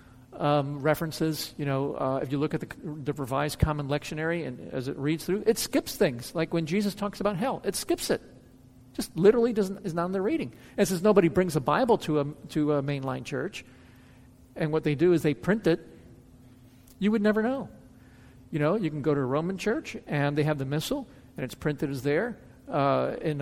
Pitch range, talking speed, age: 135-175 Hz, 220 wpm, 50-69